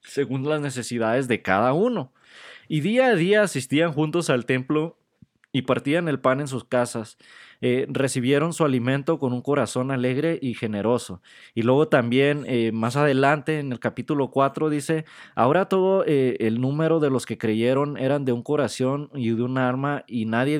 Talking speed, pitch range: 180 wpm, 120-150 Hz